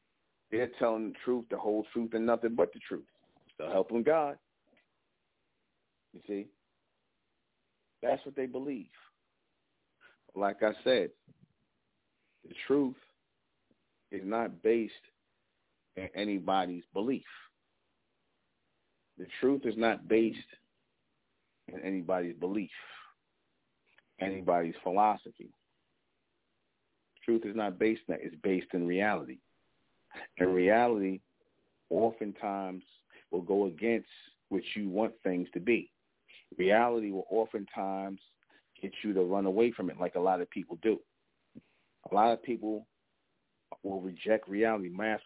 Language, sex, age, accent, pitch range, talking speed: English, male, 40-59, American, 95-115 Hz, 120 wpm